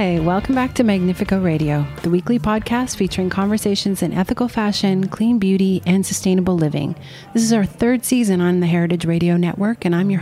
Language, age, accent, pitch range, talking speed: English, 40-59, American, 170-200 Hz, 190 wpm